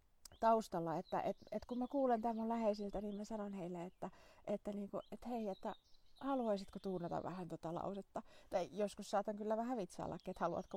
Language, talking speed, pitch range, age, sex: Finnish, 175 wpm, 180-225 Hz, 30-49, female